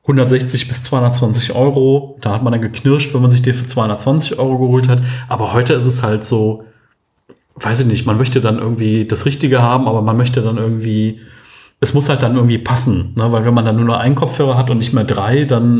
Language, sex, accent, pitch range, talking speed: German, male, German, 115-130 Hz, 230 wpm